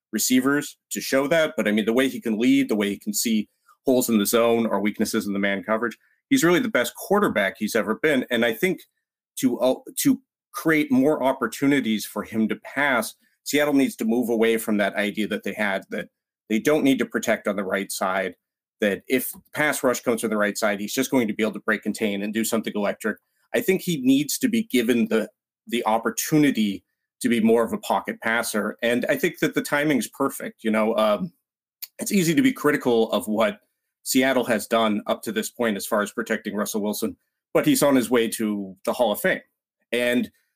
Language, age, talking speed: English, 30-49, 220 wpm